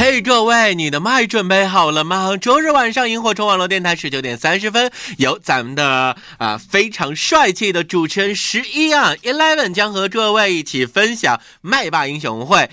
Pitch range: 150-245 Hz